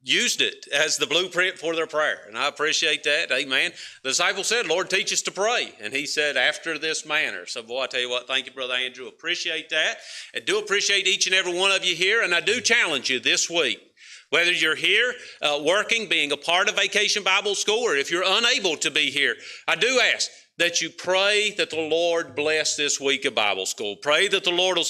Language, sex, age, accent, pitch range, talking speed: English, male, 50-69, American, 155-195 Hz, 230 wpm